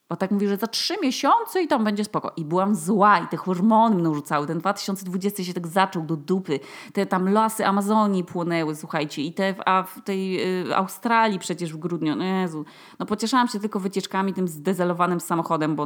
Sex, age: female, 20-39